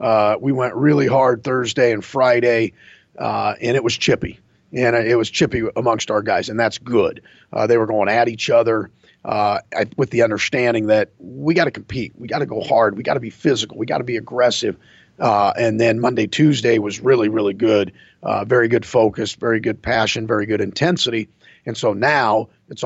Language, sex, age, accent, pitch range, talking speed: English, male, 40-59, American, 110-130 Hz, 200 wpm